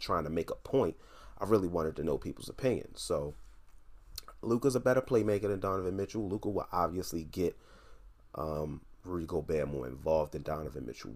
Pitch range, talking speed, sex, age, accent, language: 80-100 Hz, 170 wpm, male, 30-49, American, English